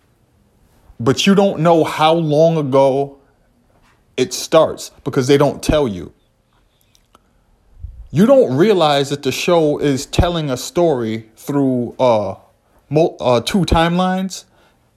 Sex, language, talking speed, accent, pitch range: male, English, 115 wpm, American, 120-165 Hz